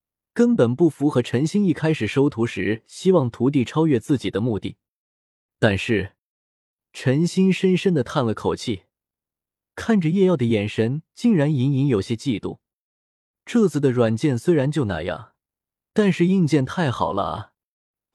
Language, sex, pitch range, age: Chinese, male, 110-155 Hz, 20-39